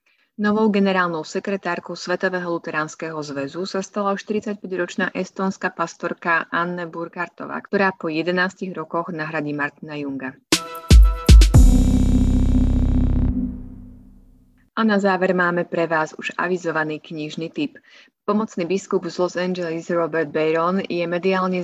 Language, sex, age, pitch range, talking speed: Slovak, female, 30-49, 160-195 Hz, 115 wpm